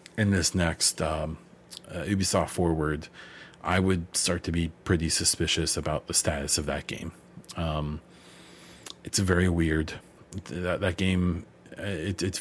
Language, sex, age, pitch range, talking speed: English, male, 30-49, 80-90 Hz, 135 wpm